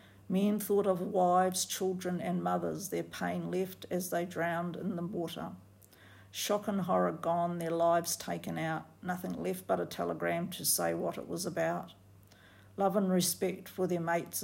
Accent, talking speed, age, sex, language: Australian, 170 wpm, 50-69, female, English